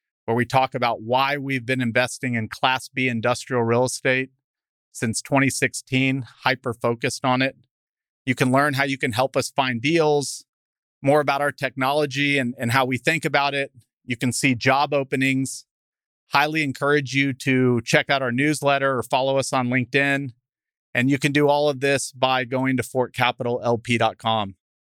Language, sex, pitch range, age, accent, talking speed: English, male, 115-135 Hz, 40-59, American, 165 wpm